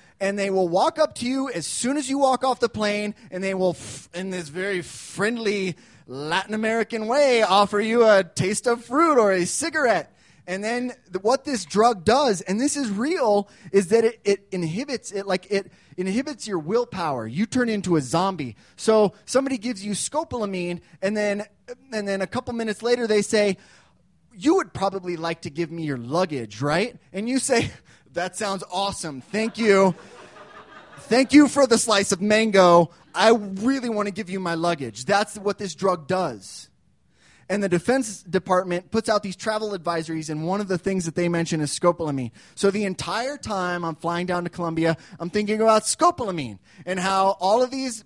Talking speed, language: 190 wpm, English